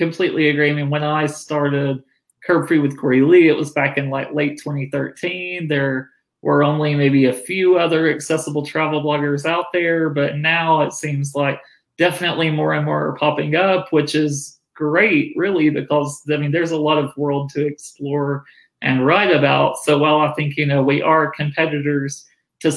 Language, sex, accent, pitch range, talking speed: English, male, American, 140-155 Hz, 185 wpm